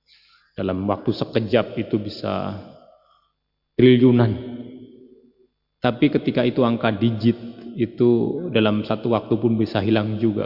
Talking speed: 110 wpm